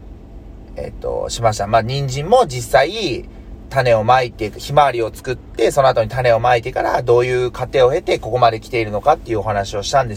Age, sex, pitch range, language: 30-49, male, 105-165 Hz, Japanese